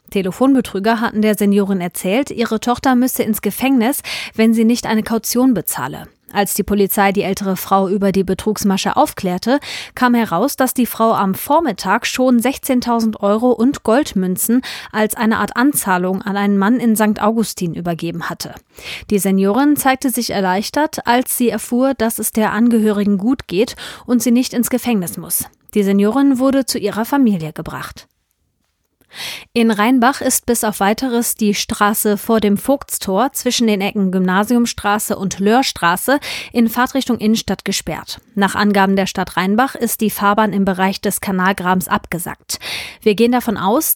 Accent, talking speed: German, 155 wpm